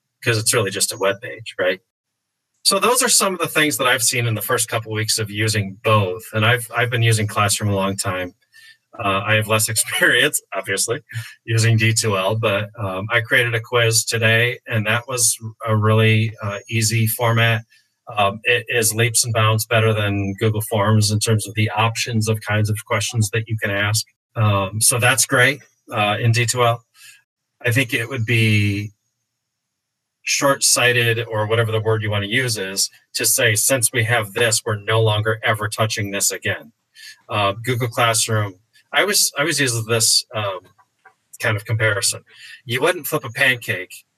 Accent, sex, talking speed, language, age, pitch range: American, male, 185 wpm, English, 30-49, 110-120 Hz